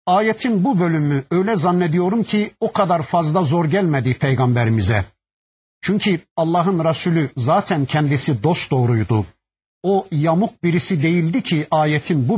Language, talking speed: Turkish, 125 wpm